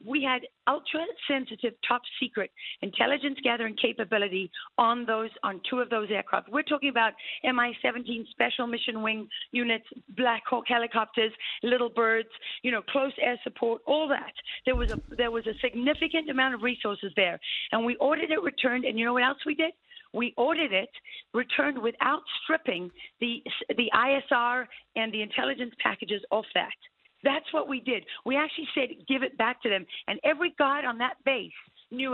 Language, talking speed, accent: English, 170 wpm, American